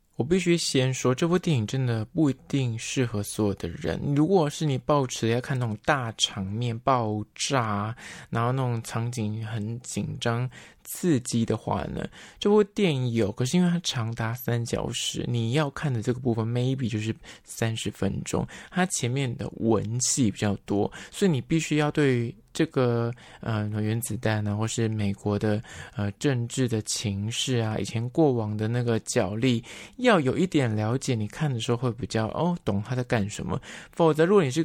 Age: 20-39